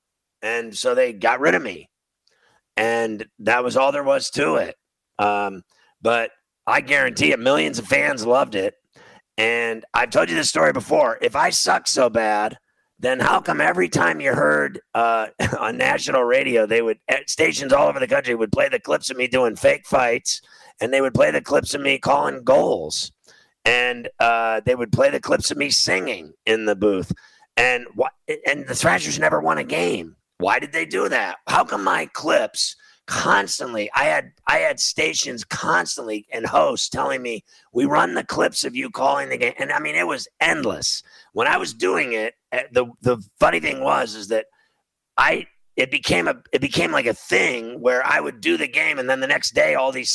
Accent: American